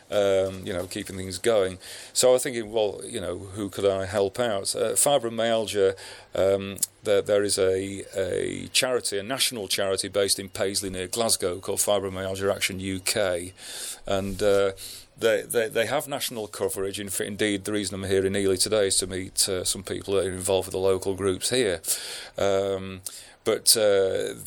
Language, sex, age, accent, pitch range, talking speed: English, male, 40-59, British, 95-125 Hz, 175 wpm